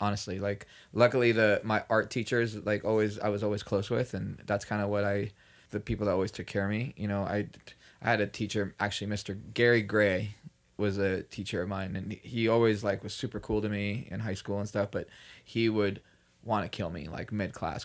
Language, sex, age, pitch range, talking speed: English, male, 20-39, 95-105 Hz, 225 wpm